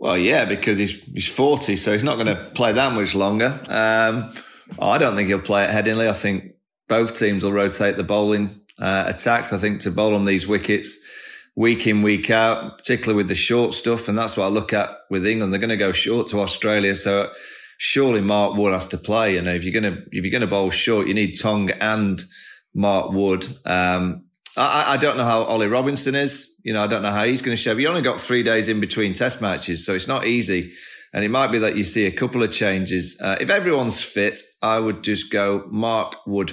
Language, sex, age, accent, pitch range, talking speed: English, male, 30-49, British, 95-115 Hz, 225 wpm